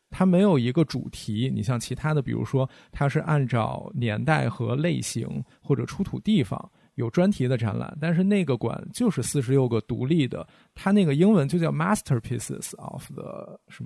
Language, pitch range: Chinese, 125-165 Hz